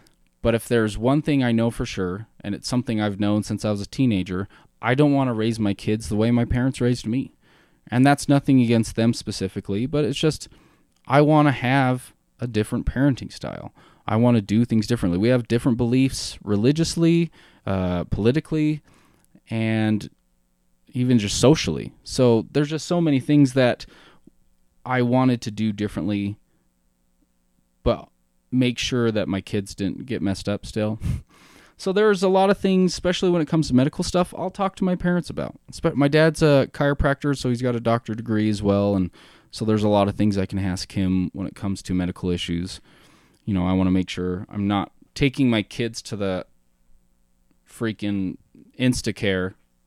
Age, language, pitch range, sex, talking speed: 20-39, English, 95-130 Hz, male, 185 wpm